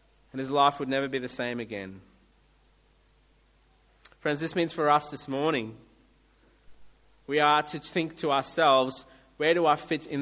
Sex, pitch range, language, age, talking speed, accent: male, 130-165 Hz, English, 20-39, 160 wpm, Australian